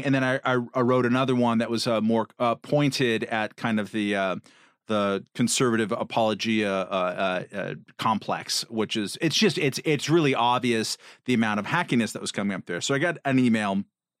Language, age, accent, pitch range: English, 40-59, American, 105-130 Hz